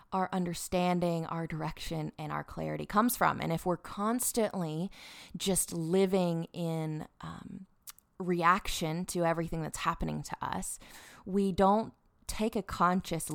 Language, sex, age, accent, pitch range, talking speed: English, female, 20-39, American, 160-190 Hz, 130 wpm